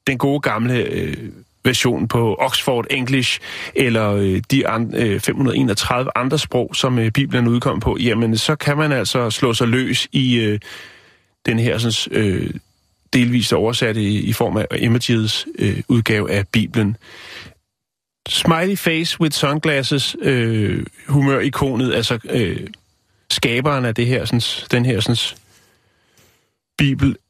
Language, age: Danish, 30-49